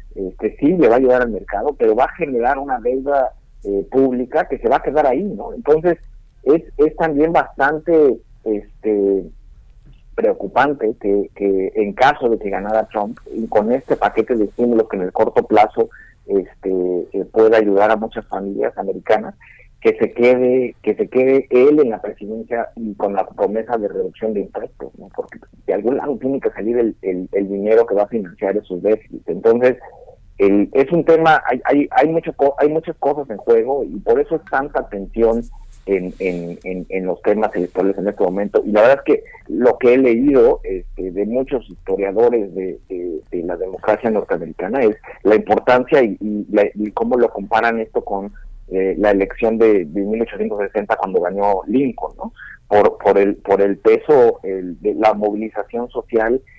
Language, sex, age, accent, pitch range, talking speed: Spanish, male, 50-69, Mexican, 100-150 Hz, 185 wpm